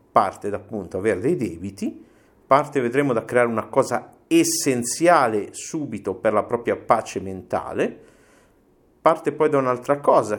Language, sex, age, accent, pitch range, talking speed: Italian, male, 50-69, native, 100-125 Hz, 135 wpm